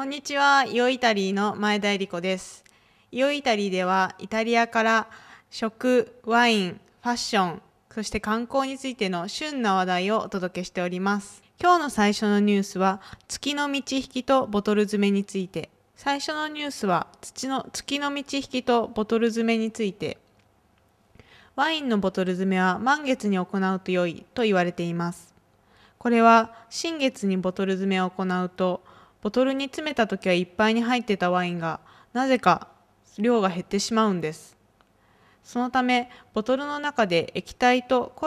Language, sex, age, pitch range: Japanese, female, 20-39, 180-240 Hz